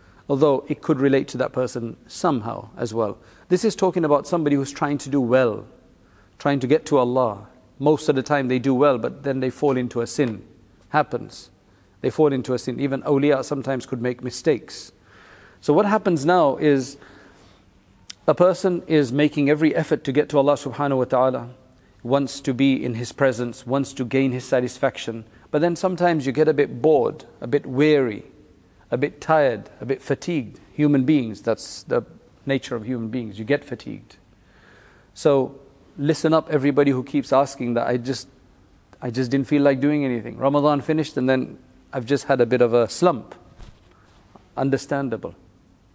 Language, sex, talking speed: English, male, 180 wpm